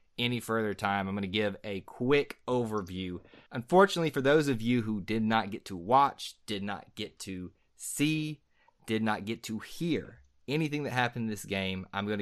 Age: 30-49